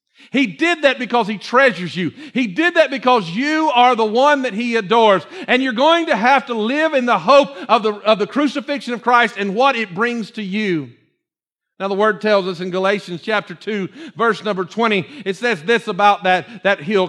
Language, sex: English, male